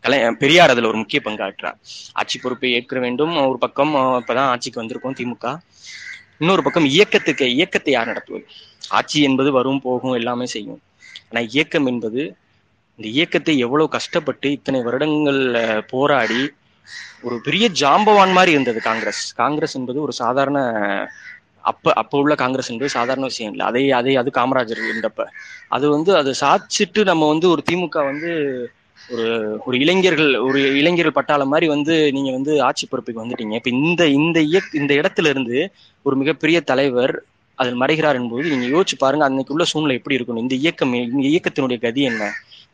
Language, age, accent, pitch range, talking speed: Tamil, 20-39, native, 125-155 Hz, 145 wpm